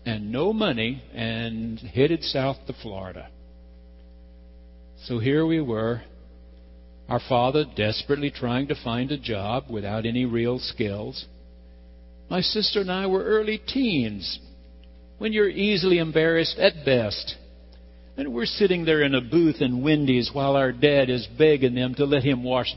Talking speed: 150 wpm